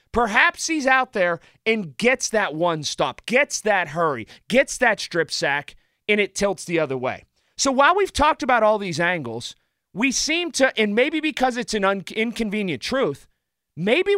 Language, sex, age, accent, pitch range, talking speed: English, male, 30-49, American, 155-230 Hz, 175 wpm